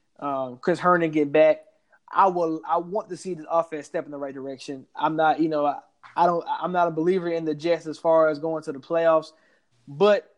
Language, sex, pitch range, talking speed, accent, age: English, male, 150-175 Hz, 230 wpm, American, 20-39